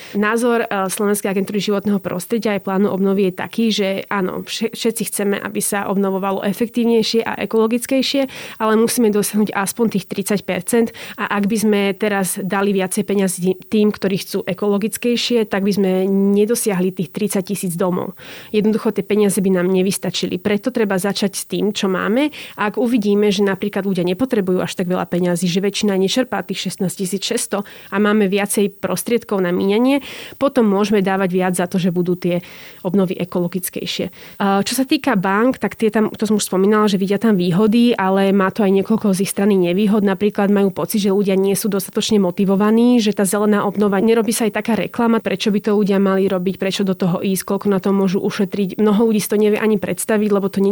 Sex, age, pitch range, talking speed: female, 30-49, 195-215 Hz, 190 wpm